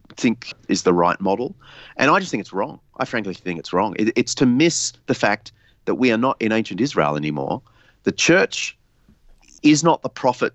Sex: male